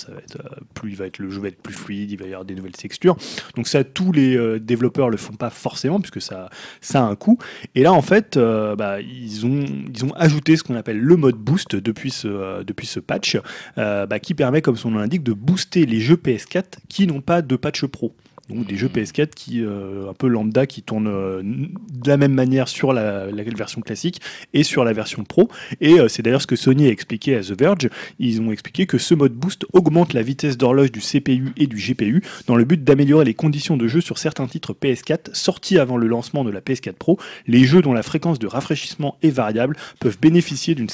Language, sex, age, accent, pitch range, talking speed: French, male, 20-39, French, 115-155 Hz, 240 wpm